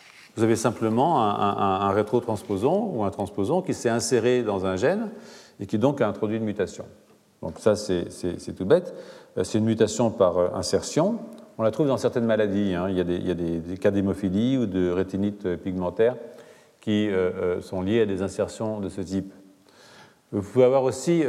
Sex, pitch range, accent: male, 100-125 Hz, French